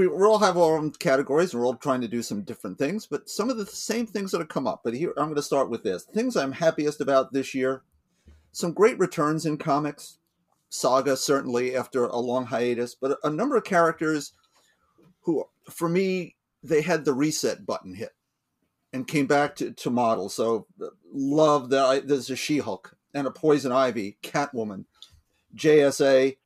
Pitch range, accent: 130-170 Hz, American